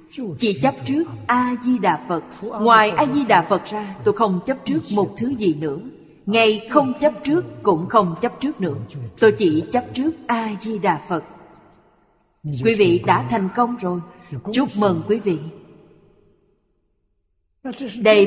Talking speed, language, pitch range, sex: 140 wpm, Vietnamese, 165-240 Hz, female